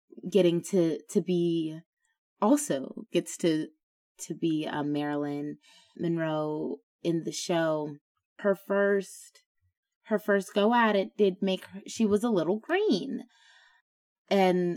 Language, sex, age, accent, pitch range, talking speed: English, female, 20-39, American, 160-210 Hz, 120 wpm